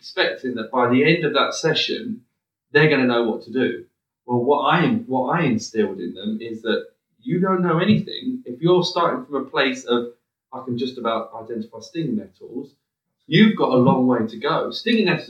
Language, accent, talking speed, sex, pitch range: English, British, 210 wpm, male, 120-185 Hz